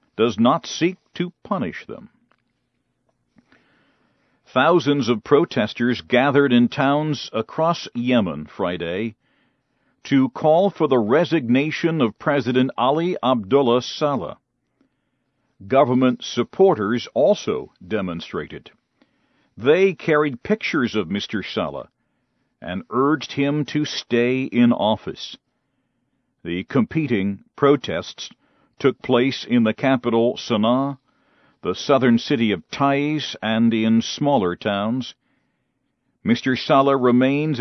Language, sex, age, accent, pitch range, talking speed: English, male, 50-69, American, 120-150 Hz, 100 wpm